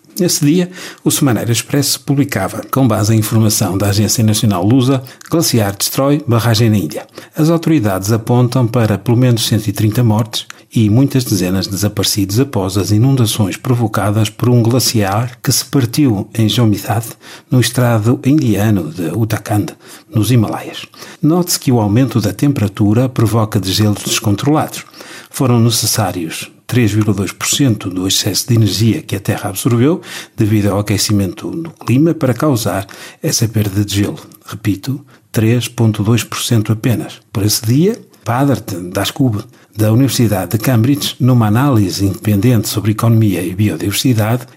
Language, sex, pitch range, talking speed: Portuguese, male, 105-130 Hz, 135 wpm